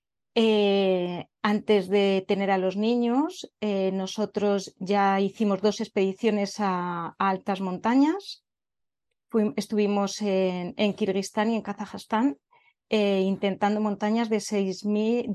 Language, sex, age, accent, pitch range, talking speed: Spanish, female, 30-49, Spanish, 195-235 Hz, 115 wpm